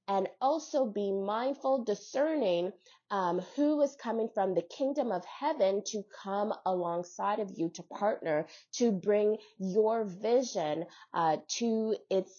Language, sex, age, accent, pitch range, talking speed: English, female, 20-39, American, 190-250 Hz, 135 wpm